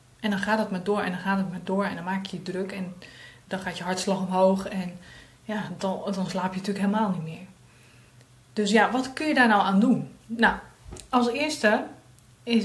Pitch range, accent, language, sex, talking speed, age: 180-220 Hz, Dutch, Dutch, female, 225 wpm, 20-39